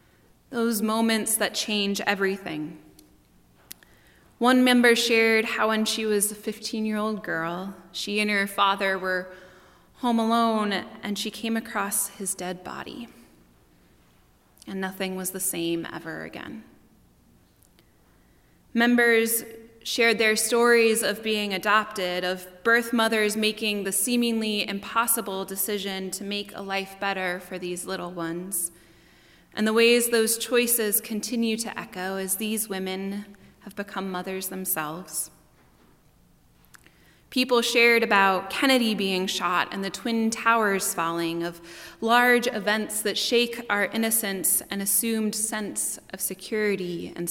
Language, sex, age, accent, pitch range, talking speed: English, female, 20-39, American, 185-225 Hz, 125 wpm